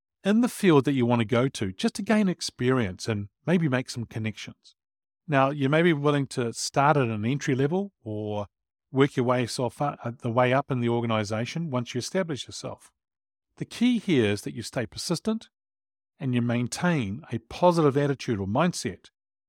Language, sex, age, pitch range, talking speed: English, male, 40-59, 105-150 Hz, 180 wpm